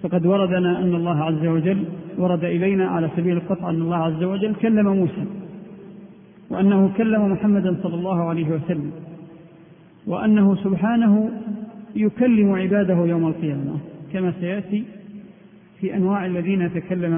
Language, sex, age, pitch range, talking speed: Arabic, male, 50-69, 175-210 Hz, 125 wpm